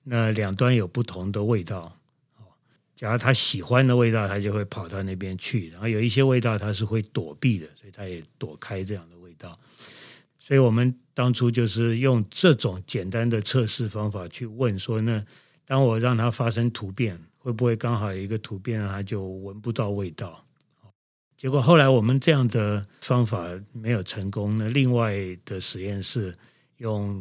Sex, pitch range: male, 100-125 Hz